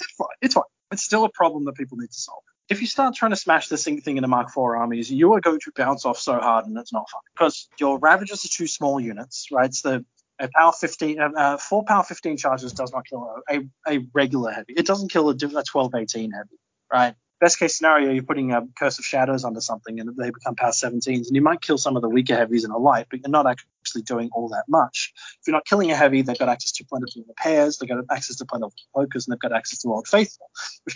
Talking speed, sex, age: 260 wpm, male, 20-39